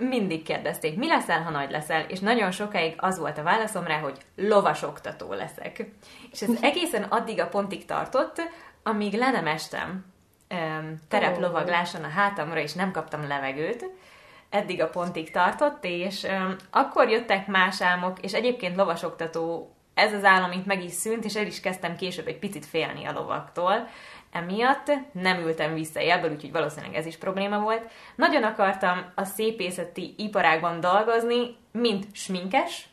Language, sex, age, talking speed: Hungarian, female, 20-39, 150 wpm